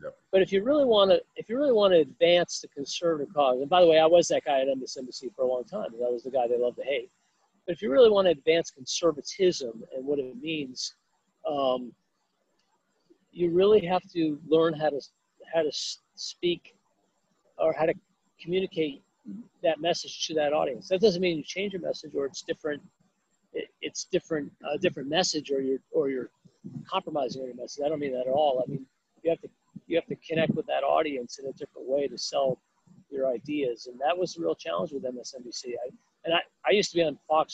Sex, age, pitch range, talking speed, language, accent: male, 50-69, 140-185 Hz, 215 wpm, English, American